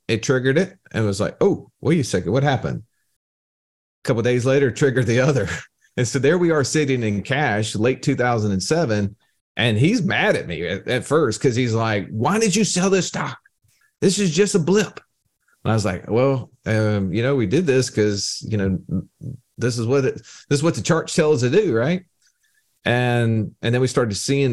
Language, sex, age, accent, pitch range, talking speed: English, male, 40-59, American, 105-140 Hz, 210 wpm